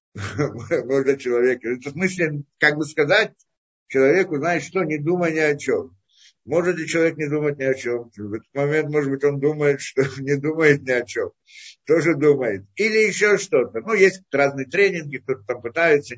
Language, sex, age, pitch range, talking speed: Russian, male, 60-79, 145-195 Hz, 170 wpm